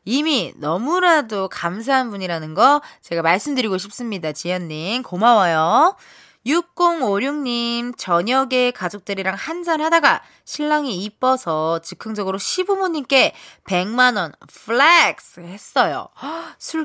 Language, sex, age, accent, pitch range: Korean, female, 20-39, native, 185-300 Hz